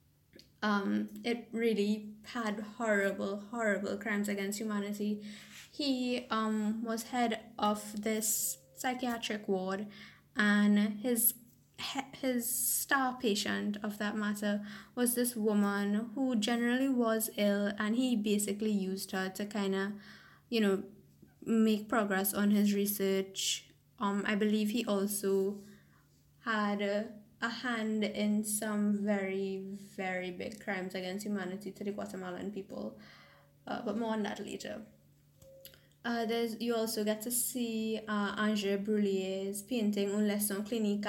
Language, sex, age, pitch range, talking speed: English, female, 10-29, 200-225 Hz, 130 wpm